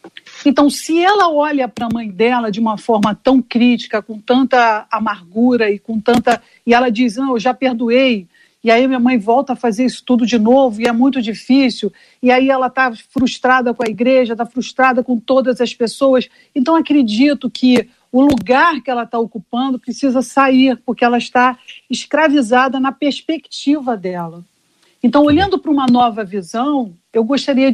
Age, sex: 50-69, female